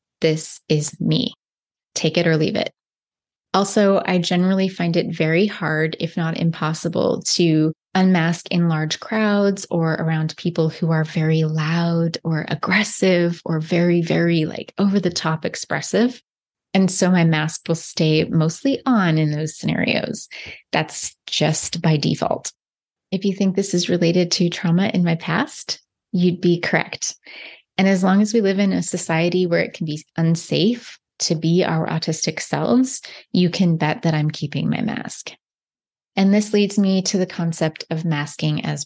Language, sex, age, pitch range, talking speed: English, female, 20-39, 160-185 Hz, 165 wpm